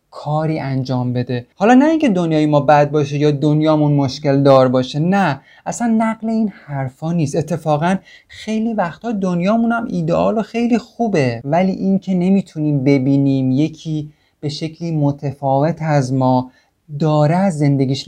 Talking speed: 140 wpm